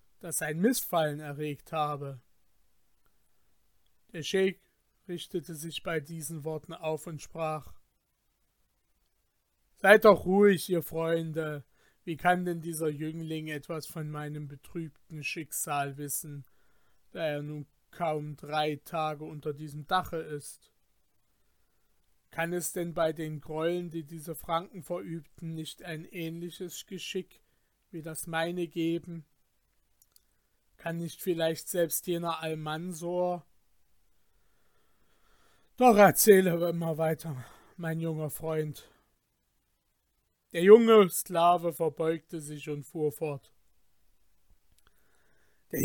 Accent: German